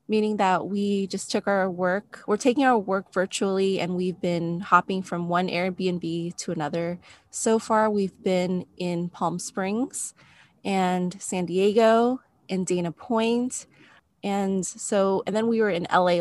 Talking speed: 155 wpm